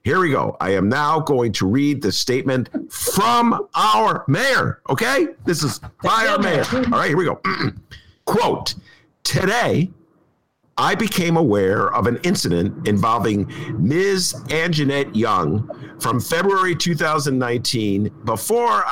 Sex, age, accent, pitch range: male, 50-69, American, 130-170 Hz